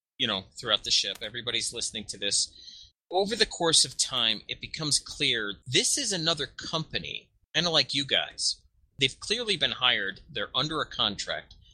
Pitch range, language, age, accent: 115-145 Hz, English, 30-49, American